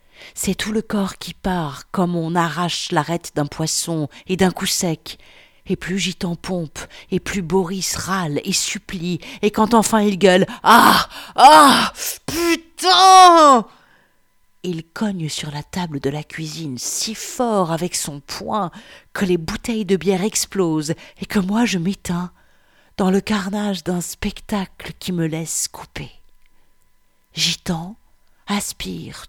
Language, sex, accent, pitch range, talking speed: French, female, French, 150-190 Hz, 140 wpm